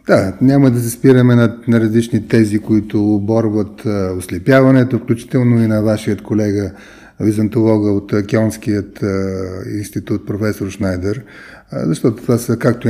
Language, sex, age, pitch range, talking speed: Bulgarian, male, 30-49, 105-125 Hz, 130 wpm